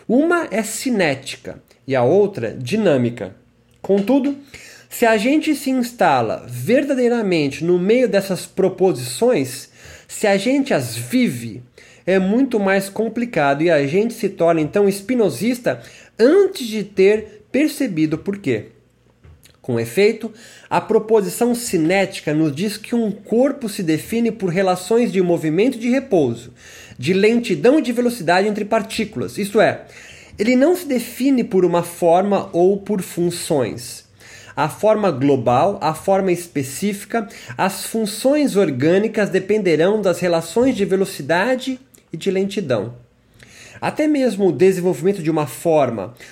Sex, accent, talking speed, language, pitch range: male, Brazilian, 130 wpm, Portuguese, 170-230 Hz